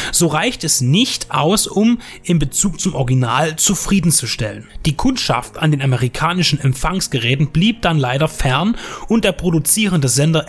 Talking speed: 145 wpm